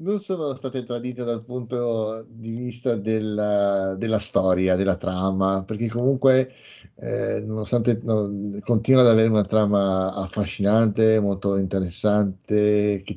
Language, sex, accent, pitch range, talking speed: Italian, male, native, 100-130 Hz, 125 wpm